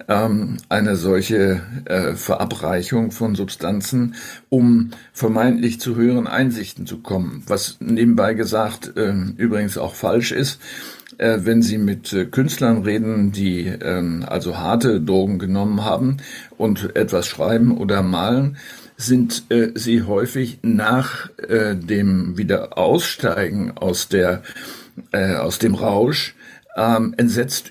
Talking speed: 120 wpm